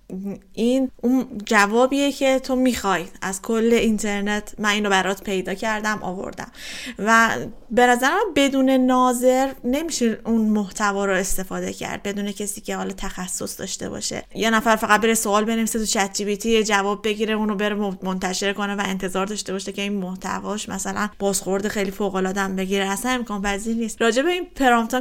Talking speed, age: 165 wpm, 20-39